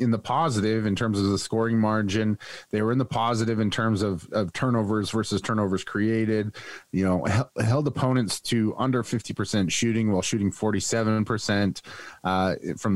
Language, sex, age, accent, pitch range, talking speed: English, male, 30-49, American, 100-115 Hz, 160 wpm